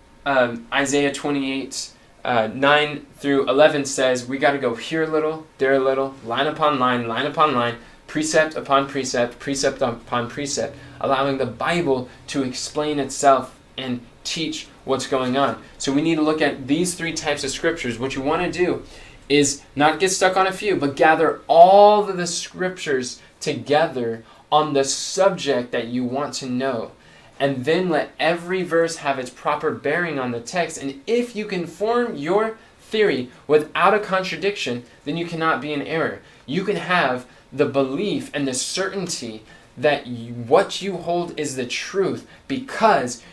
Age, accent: 20-39, American